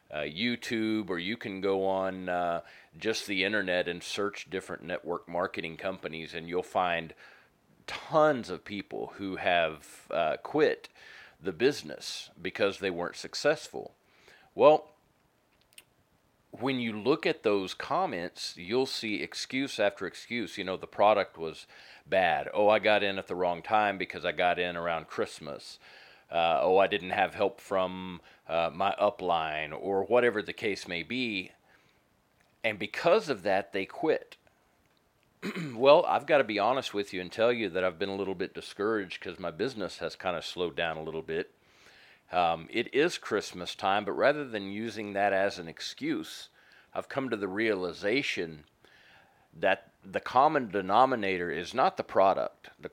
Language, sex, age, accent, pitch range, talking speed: English, male, 40-59, American, 90-105 Hz, 160 wpm